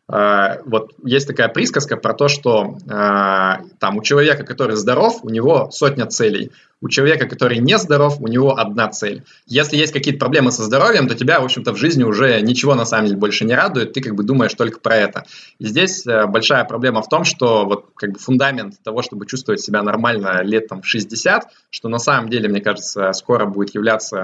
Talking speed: 205 wpm